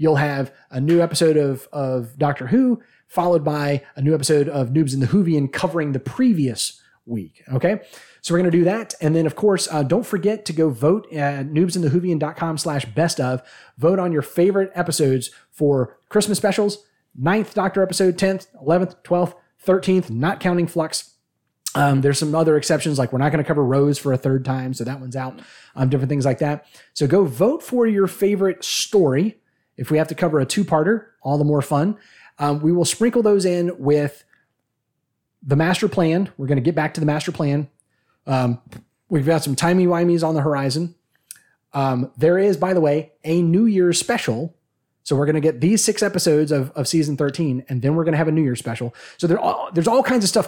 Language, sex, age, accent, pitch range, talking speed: English, male, 30-49, American, 140-180 Hz, 200 wpm